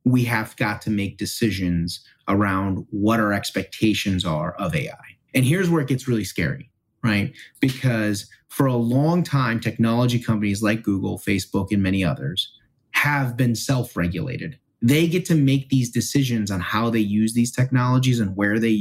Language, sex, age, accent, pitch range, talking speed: English, male, 30-49, American, 105-135 Hz, 165 wpm